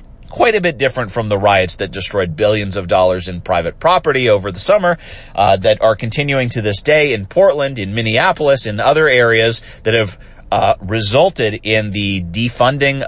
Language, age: English, 30-49